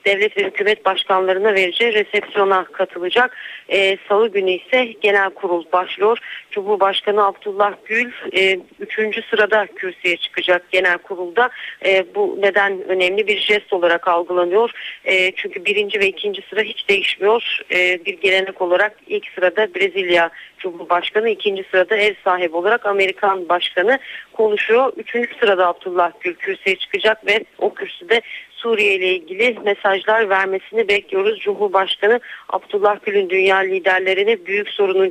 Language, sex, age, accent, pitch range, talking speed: Turkish, female, 40-59, native, 190-230 Hz, 135 wpm